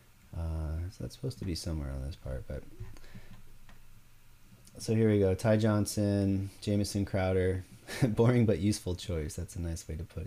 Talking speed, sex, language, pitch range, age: 170 wpm, male, English, 90-110 Hz, 30-49